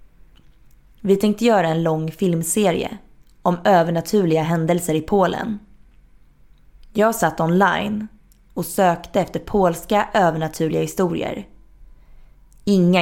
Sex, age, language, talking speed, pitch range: female, 20-39, Swedish, 95 wpm, 165-205 Hz